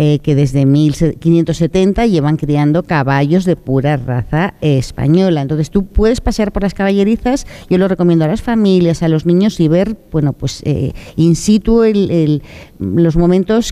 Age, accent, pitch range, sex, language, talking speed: 50-69, Spanish, 150-195 Hz, female, Spanish, 165 wpm